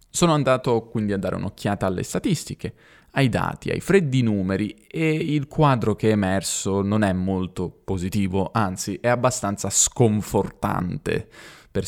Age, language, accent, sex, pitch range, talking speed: 20-39, Italian, native, male, 95-130 Hz, 140 wpm